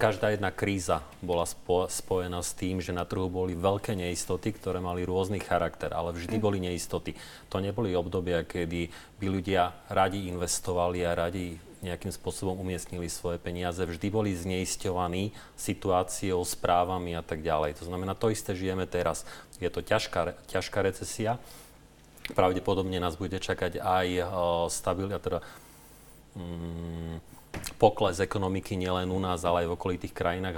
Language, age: Slovak, 30-49